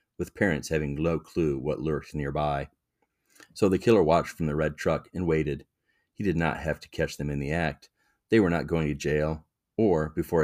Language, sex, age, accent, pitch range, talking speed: English, male, 40-59, American, 75-85 Hz, 205 wpm